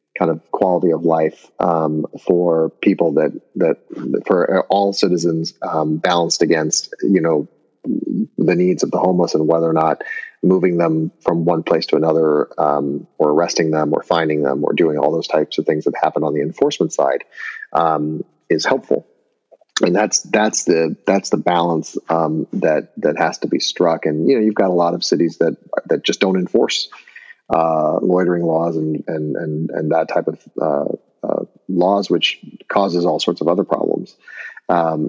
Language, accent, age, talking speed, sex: English, American, 30-49, 180 wpm, male